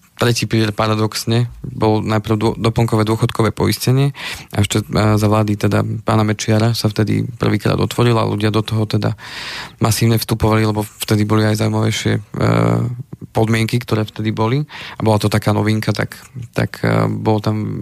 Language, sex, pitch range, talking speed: Slovak, male, 110-120 Hz, 150 wpm